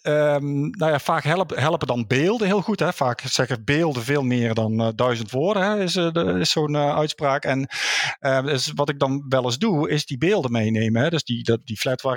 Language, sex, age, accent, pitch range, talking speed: Dutch, male, 50-69, Dutch, 120-150 Hz, 230 wpm